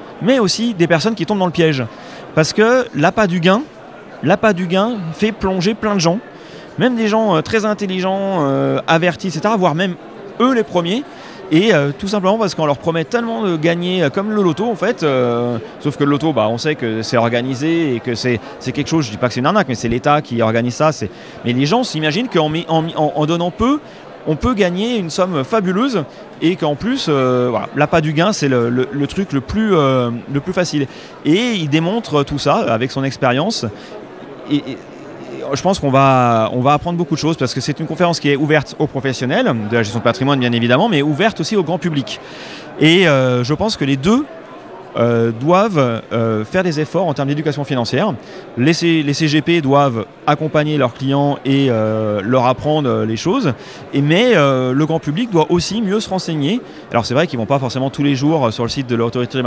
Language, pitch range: French, 125-185 Hz